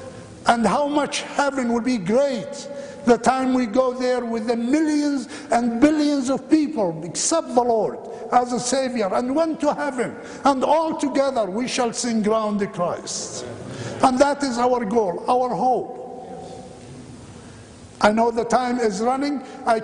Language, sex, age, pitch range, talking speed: English, male, 60-79, 225-265 Hz, 155 wpm